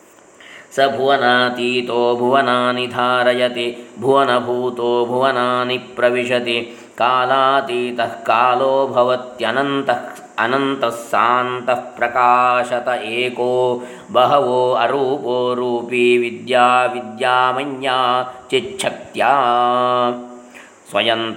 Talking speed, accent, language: 55 wpm, native, Kannada